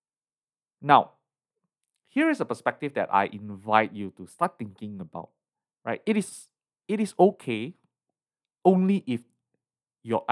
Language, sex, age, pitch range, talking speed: English, male, 20-39, 105-135 Hz, 130 wpm